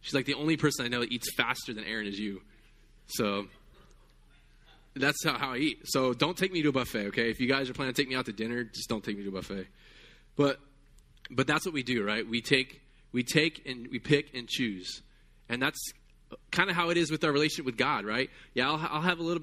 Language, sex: English, male